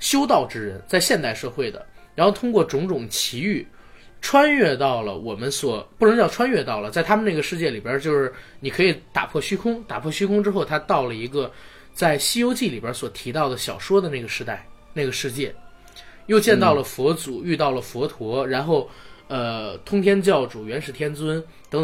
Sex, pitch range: male, 130-195 Hz